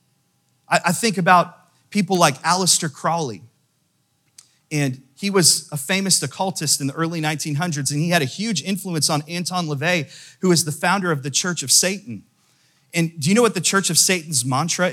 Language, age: English, 30-49